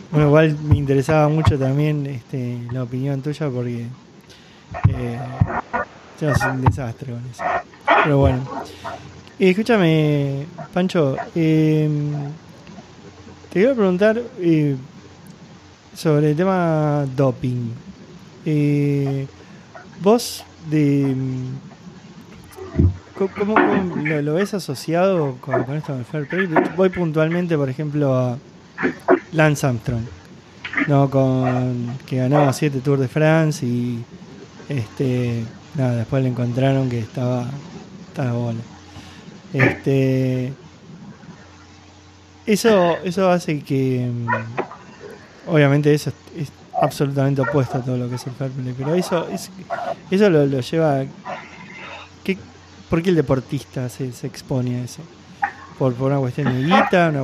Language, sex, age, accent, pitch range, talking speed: Spanish, male, 20-39, Argentinian, 130-165 Hz, 125 wpm